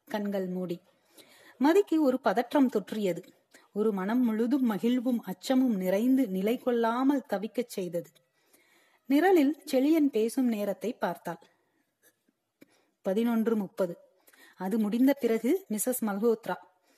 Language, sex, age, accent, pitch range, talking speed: Tamil, female, 30-49, native, 205-275 Hz, 90 wpm